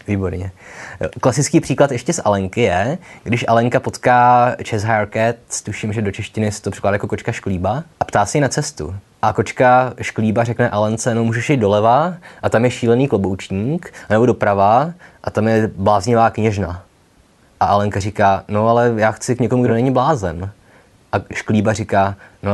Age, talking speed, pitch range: 20-39, 175 wpm, 95-120 Hz